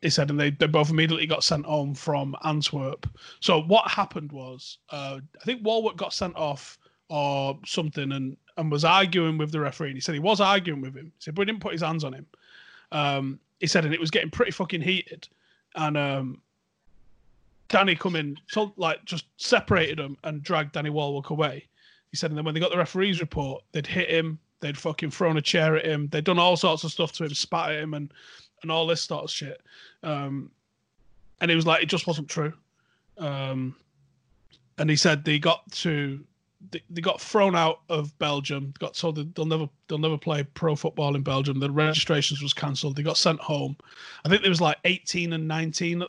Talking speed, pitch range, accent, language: 210 wpm, 145-175 Hz, British, English